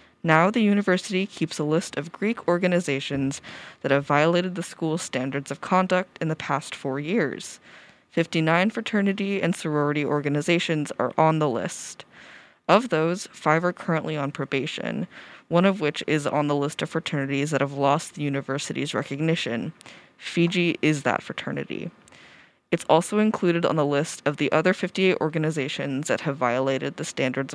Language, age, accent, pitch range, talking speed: English, 20-39, American, 140-180 Hz, 160 wpm